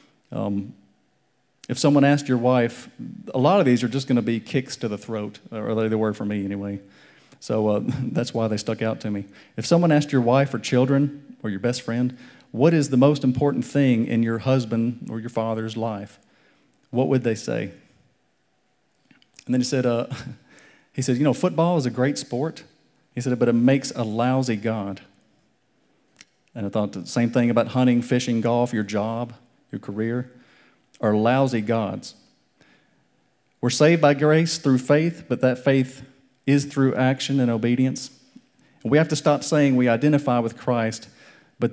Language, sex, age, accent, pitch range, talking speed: English, male, 40-59, American, 110-135 Hz, 180 wpm